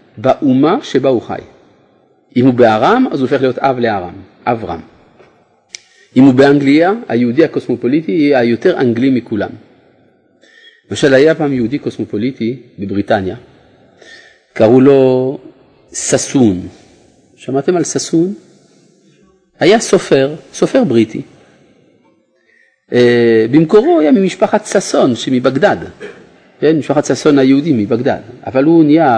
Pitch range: 105-150 Hz